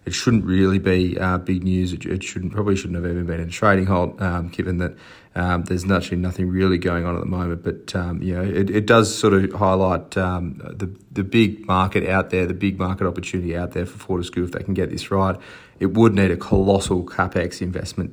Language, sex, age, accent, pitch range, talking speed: English, male, 30-49, Australian, 90-100 Hz, 230 wpm